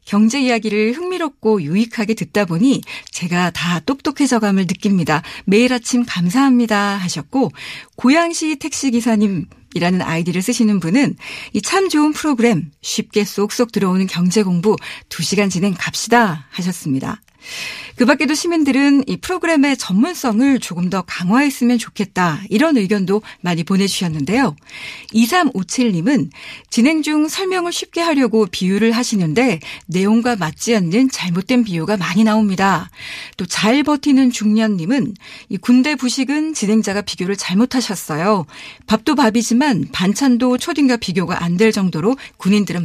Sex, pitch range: female, 185-260 Hz